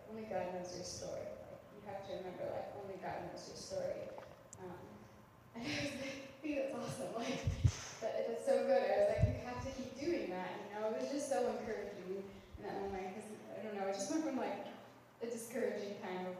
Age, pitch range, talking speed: 10-29, 185-210 Hz, 225 wpm